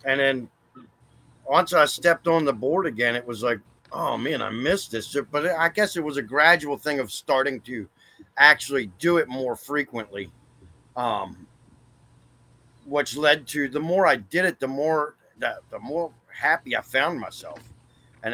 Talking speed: 170 wpm